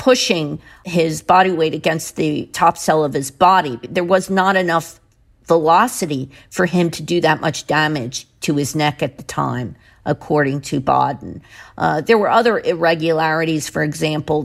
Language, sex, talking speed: English, female, 160 wpm